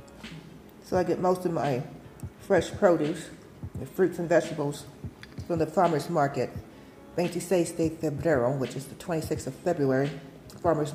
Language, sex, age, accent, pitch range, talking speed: English, female, 40-59, American, 130-165 Hz, 135 wpm